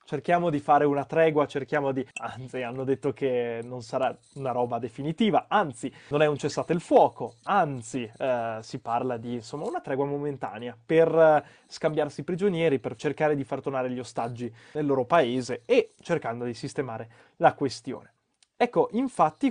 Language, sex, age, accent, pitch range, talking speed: Italian, male, 20-39, native, 125-170 Hz, 165 wpm